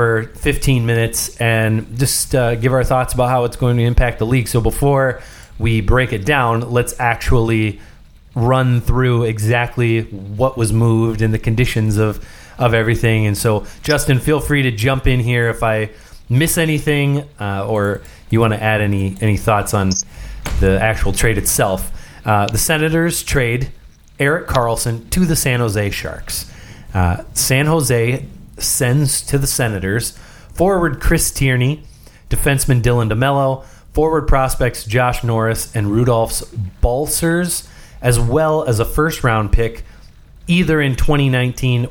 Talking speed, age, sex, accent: 150 wpm, 30-49, male, American